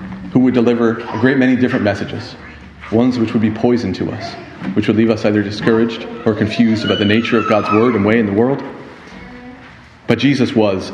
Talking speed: 205 wpm